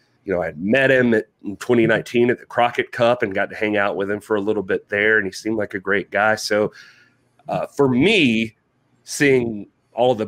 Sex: male